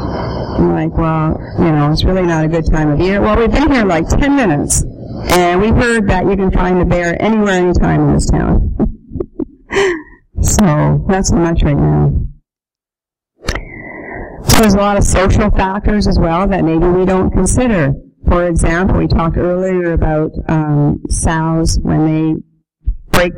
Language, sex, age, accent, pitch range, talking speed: English, female, 50-69, American, 150-180 Hz, 165 wpm